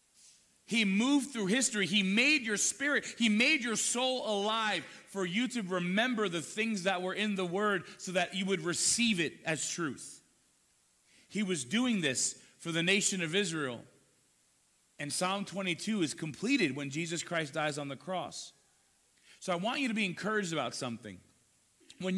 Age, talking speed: 30-49, 170 wpm